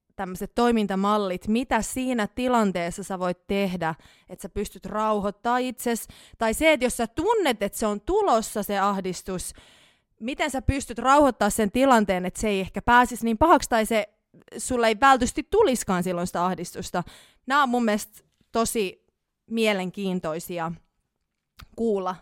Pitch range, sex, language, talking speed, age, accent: 205-270 Hz, female, Finnish, 145 wpm, 20-39, native